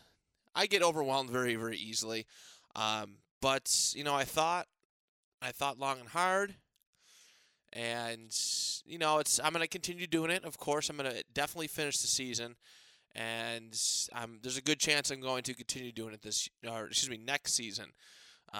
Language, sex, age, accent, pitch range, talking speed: English, male, 20-39, American, 115-150 Hz, 170 wpm